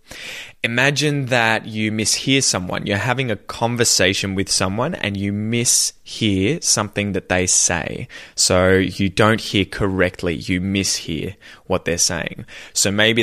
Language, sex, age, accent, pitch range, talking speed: English, male, 20-39, Australian, 90-110 Hz, 135 wpm